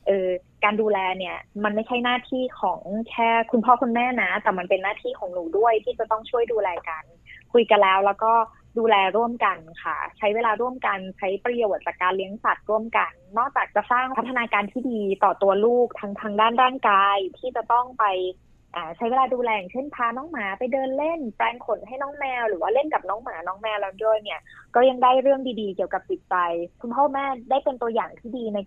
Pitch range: 195-245 Hz